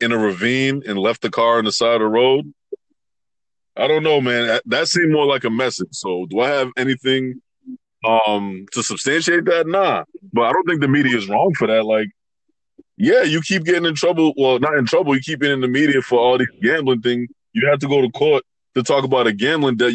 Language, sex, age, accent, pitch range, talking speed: English, male, 20-39, American, 115-155 Hz, 230 wpm